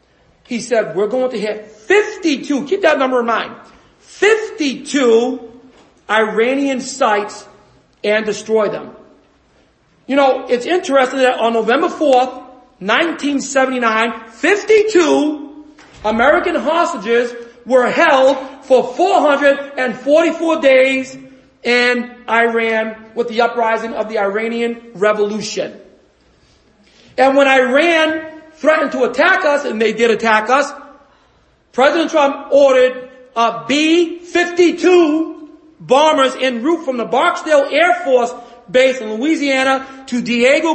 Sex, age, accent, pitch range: male, 40-59, American, 235-290 Hz